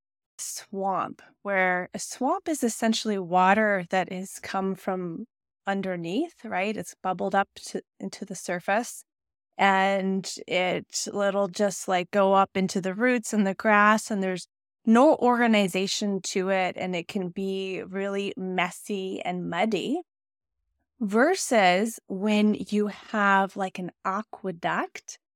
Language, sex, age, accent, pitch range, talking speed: English, female, 20-39, American, 190-240 Hz, 130 wpm